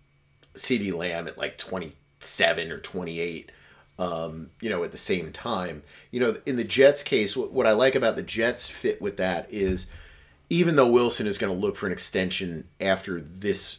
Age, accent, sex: 30-49, American, male